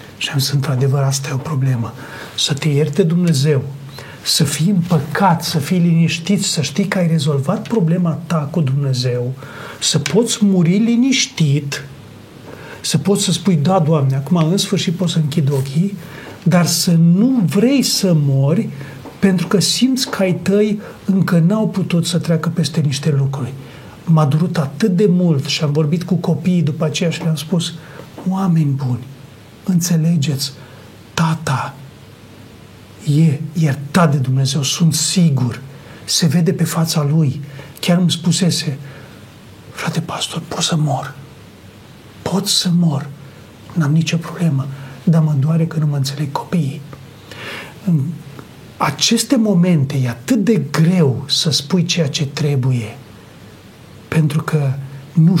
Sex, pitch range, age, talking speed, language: male, 140-175 Hz, 40-59, 140 wpm, Romanian